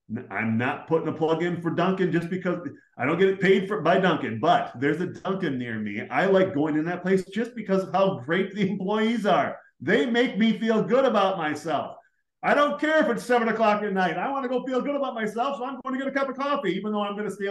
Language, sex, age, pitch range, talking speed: English, male, 30-49, 135-195 Hz, 265 wpm